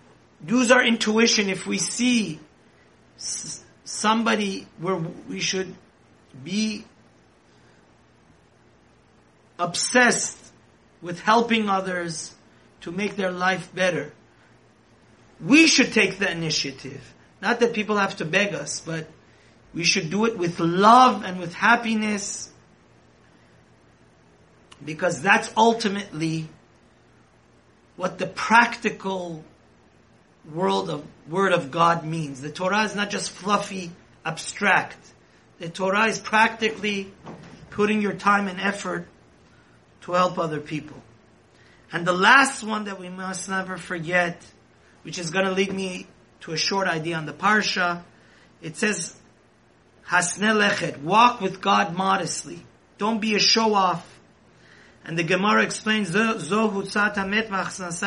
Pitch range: 155-210 Hz